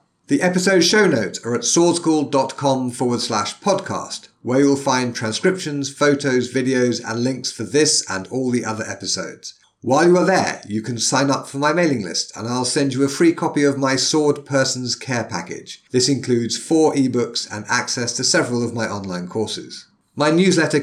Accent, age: British, 50-69